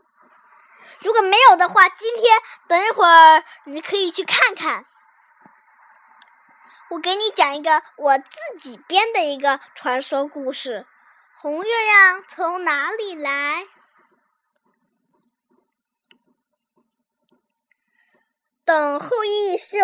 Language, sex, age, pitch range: Chinese, male, 20-39, 305-405 Hz